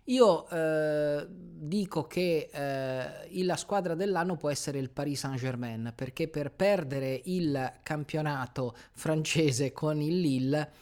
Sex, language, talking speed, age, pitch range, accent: male, Italian, 130 wpm, 30-49, 125-150 Hz, native